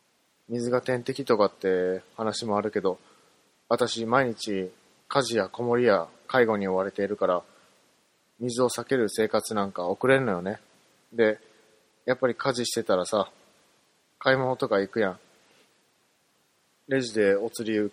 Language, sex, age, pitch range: Japanese, male, 20-39, 100-130 Hz